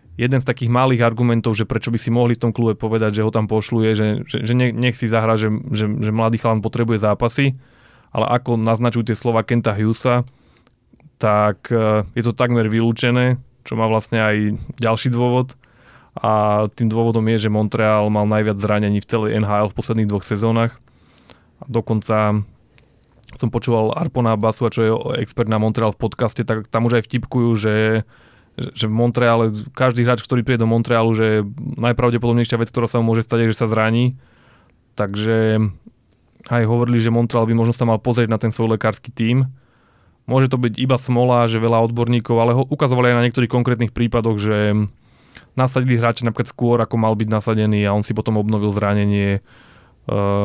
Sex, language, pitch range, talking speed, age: male, Slovak, 110-120 Hz, 175 wpm, 20-39